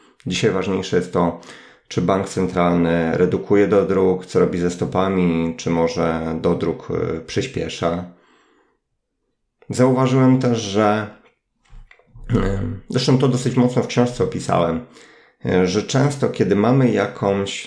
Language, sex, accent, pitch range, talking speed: Polish, male, native, 90-125 Hz, 115 wpm